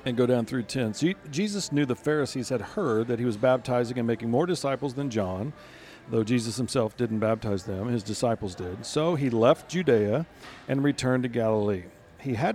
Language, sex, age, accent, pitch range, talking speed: English, male, 40-59, American, 115-155 Hz, 190 wpm